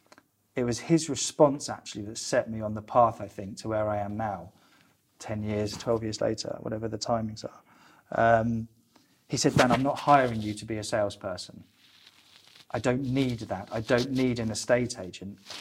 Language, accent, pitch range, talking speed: English, British, 110-125 Hz, 190 wpm